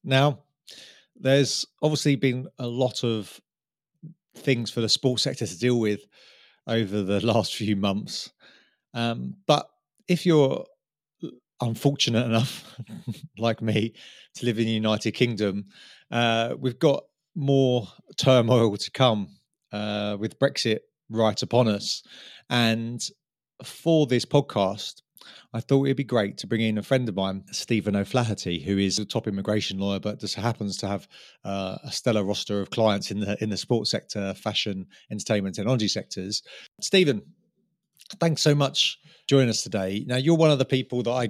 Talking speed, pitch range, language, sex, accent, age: 160 wpm, 105-130 Hz, English, male, British, 30-49